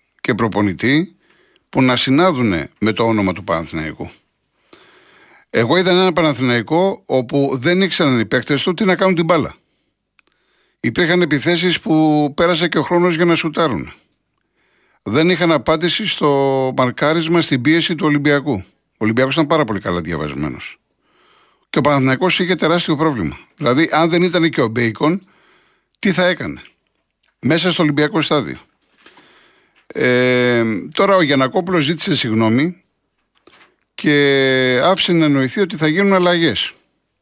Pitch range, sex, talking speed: 125-175 Hz, male, 140 wpm